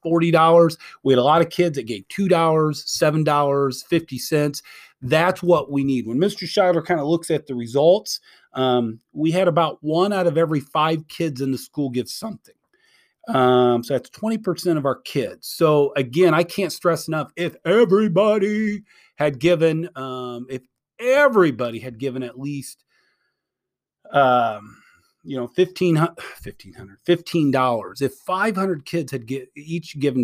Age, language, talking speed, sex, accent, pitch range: 40-59, English, 145 wpm, male, American, 135-175 Hz